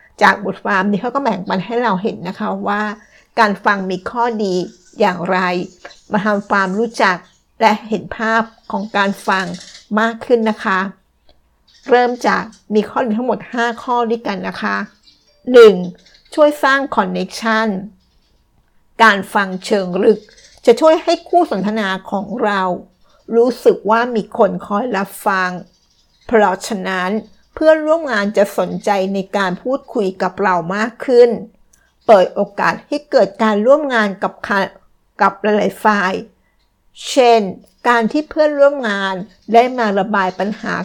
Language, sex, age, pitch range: Thai, female, 60-79, 195-235 Hz